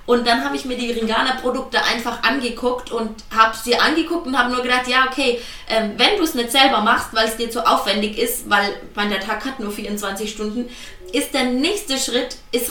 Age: 20-39